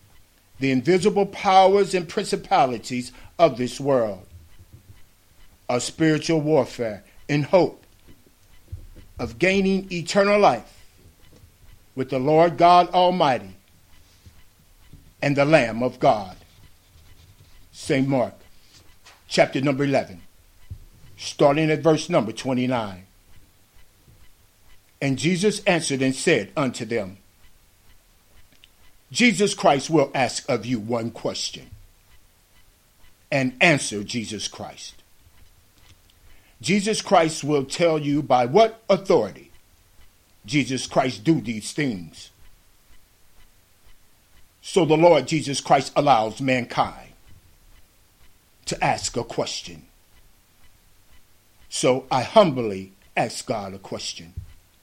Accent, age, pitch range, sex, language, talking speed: American, 50-69, 90-145 Hz, male, English, 95 wpm